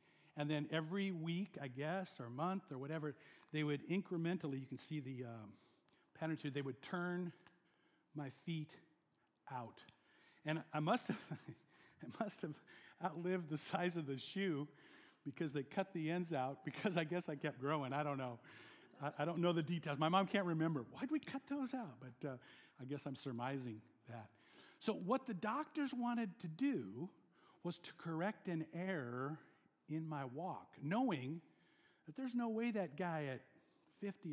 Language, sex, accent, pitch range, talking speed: English, male, American, 145-195 Hz, 170 wpm